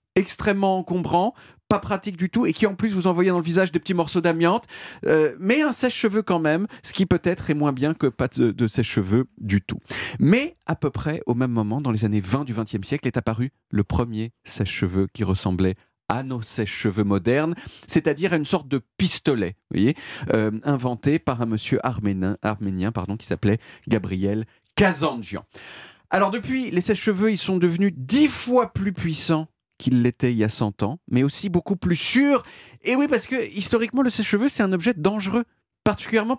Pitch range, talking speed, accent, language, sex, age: 115-195 Hz, 190 wpm, French, French, male, 40-59